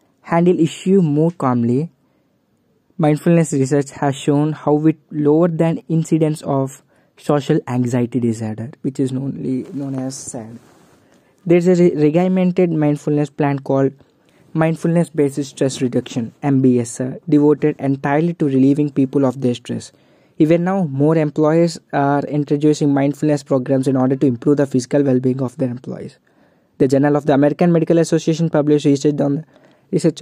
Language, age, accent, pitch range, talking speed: English, 20-39, Indian, 135-155 Hz, 145 wpm